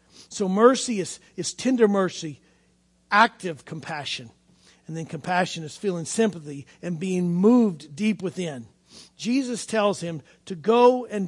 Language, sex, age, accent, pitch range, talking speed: English, male, 50-69, American, 165-225 Hz, 135 wpm